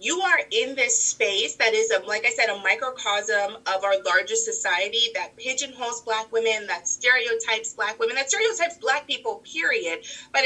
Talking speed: 180 wpm